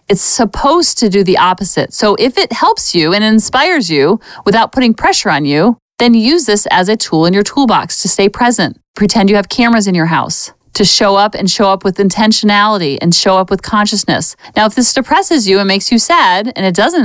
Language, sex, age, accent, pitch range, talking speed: English, female, 40-59, American, 185-240 Hz, 220 wpm